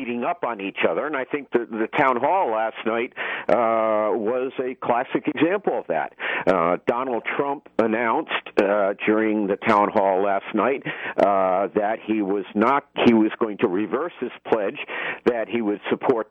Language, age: English, 50-69